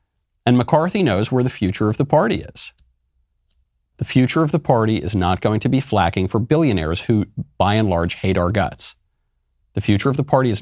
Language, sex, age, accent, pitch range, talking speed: English, male, 40-59, American, 90-135 Hz, 205 wpm